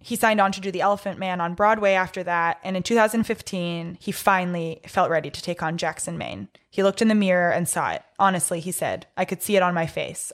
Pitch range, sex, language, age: 180-210 Hz, female, English, 20-39